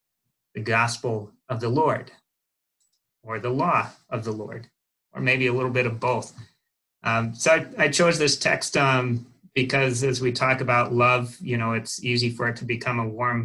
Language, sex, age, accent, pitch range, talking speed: English, male, 30-49, American, 115-125 Hz, 185 wpm